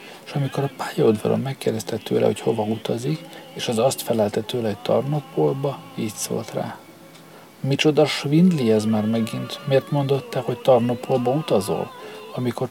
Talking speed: 140 wpm